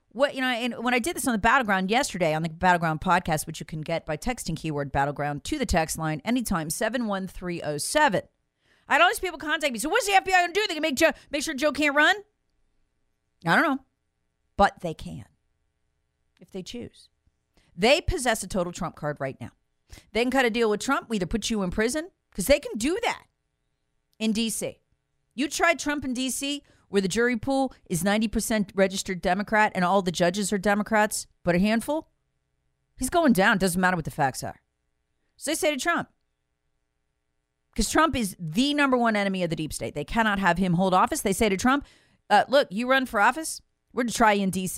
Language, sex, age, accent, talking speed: English, female, 40-59, American, 215 wpm